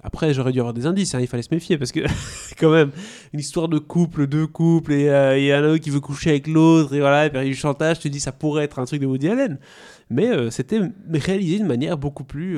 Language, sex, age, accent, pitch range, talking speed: French, male, 20-39, French, 125-160 Hz, 270 wpm